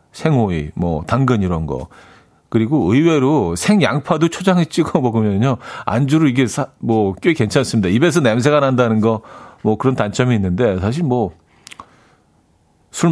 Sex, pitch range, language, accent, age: male, 95-150 Hz, Korean, native, 40-59